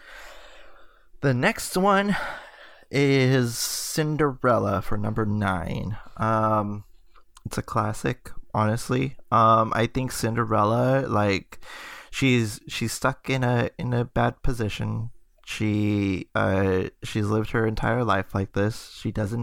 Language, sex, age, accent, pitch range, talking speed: English, male, 20-39, American, 105-120 Hz, 115 wpm